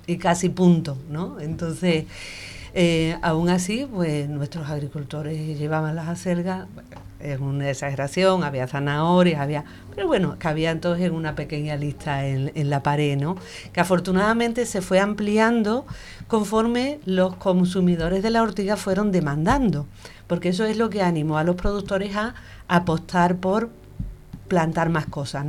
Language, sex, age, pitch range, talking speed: Spanish, female, 50-69, 155-185 Hz, 145 wpm